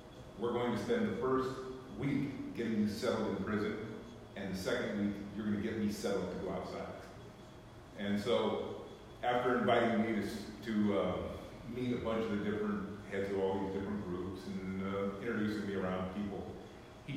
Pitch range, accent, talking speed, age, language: 100-120 Hz, American, 180 wpm, 40-59, English